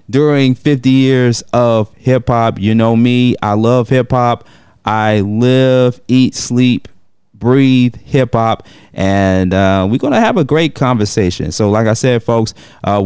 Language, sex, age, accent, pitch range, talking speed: English, male, 30-49, American, 115-185 Hz, 145 wpm